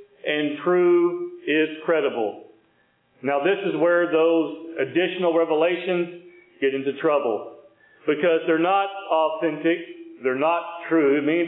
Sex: male